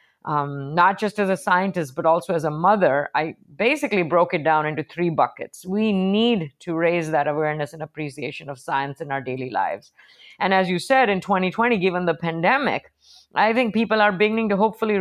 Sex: female